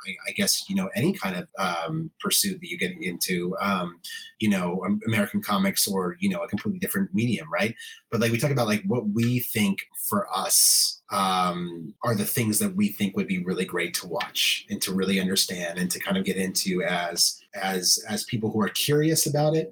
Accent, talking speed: American, 215 wpm